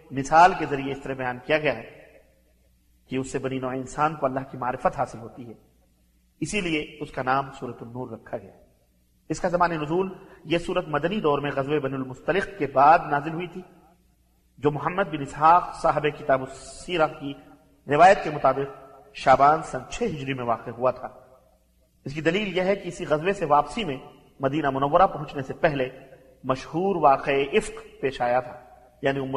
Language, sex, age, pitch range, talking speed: Arabic, male, 40-59, 130-160 Hz, 180 wpm